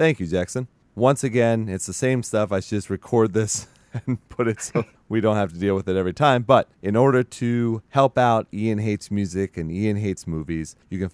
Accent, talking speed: American, 225 wpm